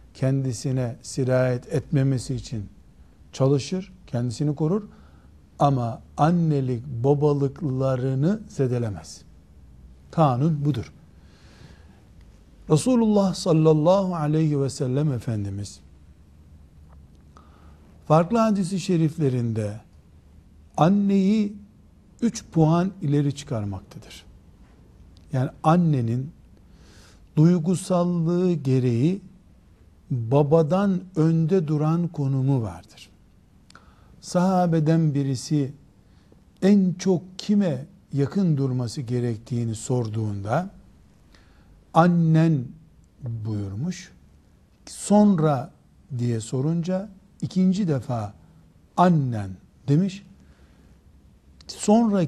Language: Turkish